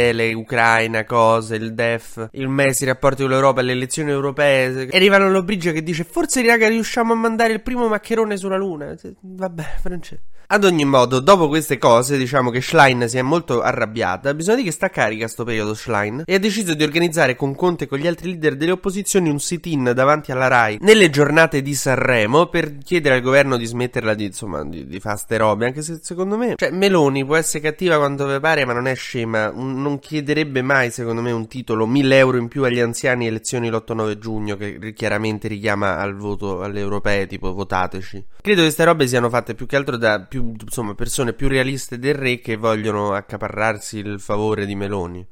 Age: 20-39